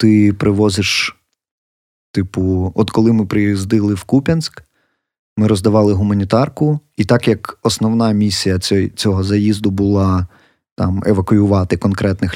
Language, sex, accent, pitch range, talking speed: Ukrainian, male, native, 95-115 Hz, 110 wpm